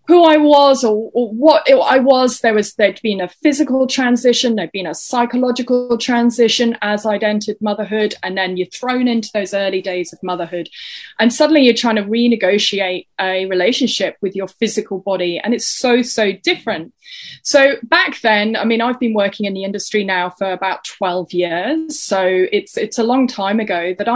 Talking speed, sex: 185 wpm, female